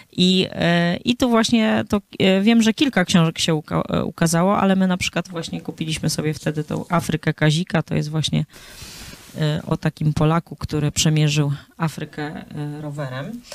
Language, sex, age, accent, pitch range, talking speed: Polish, female, 20-39, native, 150-180 Hz, 140 wpm